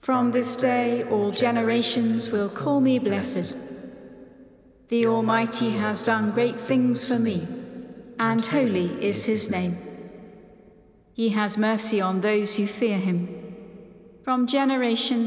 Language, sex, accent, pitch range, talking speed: English, female, British, 205-240 Hz, 125 wpm